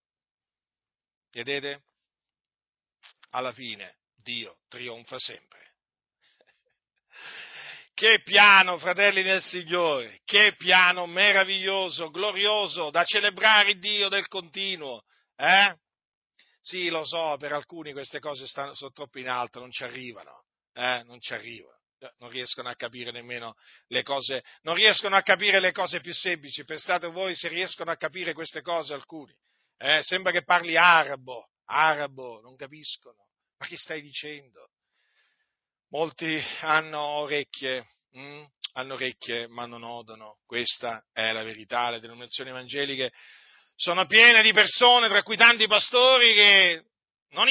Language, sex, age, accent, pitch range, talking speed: Italian, male, 50-69, native, 130-190 Hz, 130 wpm